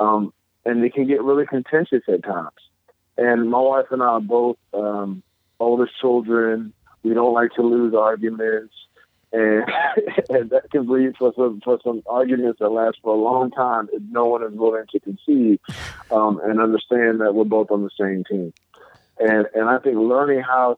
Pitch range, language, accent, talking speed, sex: 100-120 Hz, English, American, 185 wpm, male